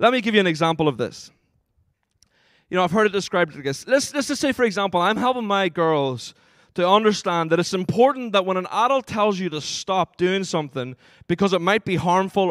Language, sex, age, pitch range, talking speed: English, male, 20-39, 170-220 Hz, 215 wpm